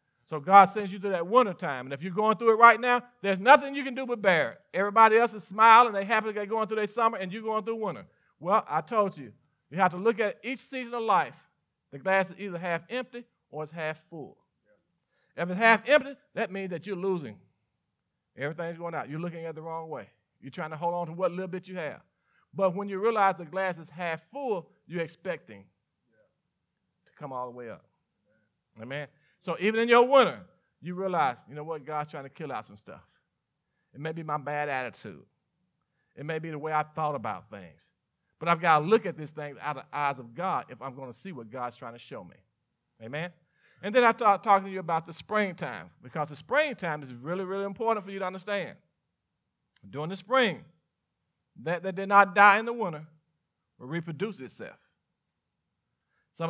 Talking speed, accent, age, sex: 220 wpm, American, 50-69, male